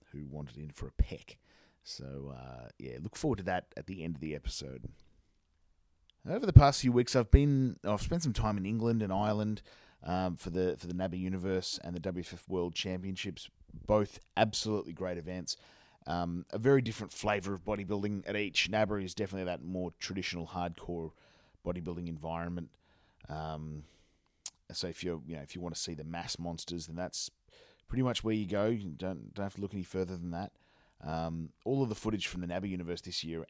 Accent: Australian